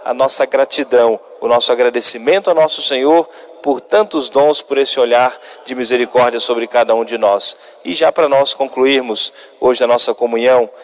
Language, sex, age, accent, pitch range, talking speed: Portuguese, male, 40-59, Brazilian, 130-165 Hz, 170 wpm